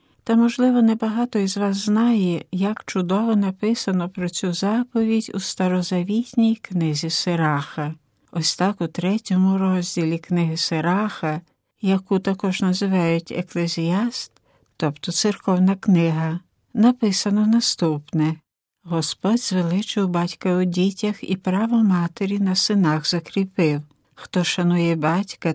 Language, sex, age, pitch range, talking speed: Ukrainian, female, 60-79, 170-210 Hz, 110 wpm